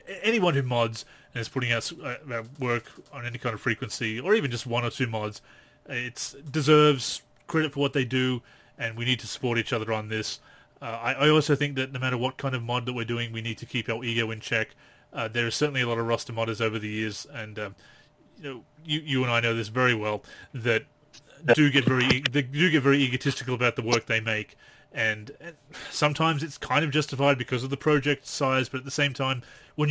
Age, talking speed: 30-49, 230 wpm